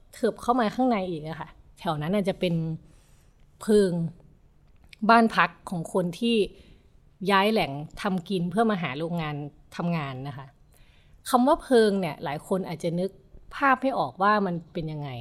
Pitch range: 165-225 Hz